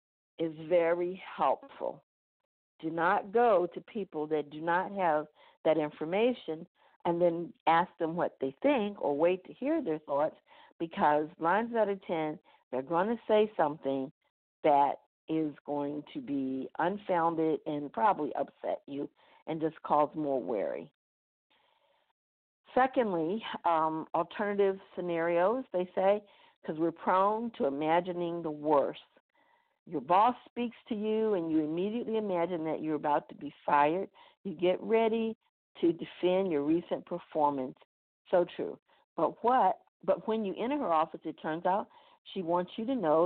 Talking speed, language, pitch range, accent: 145 wpm, English, 155-205 Hz, American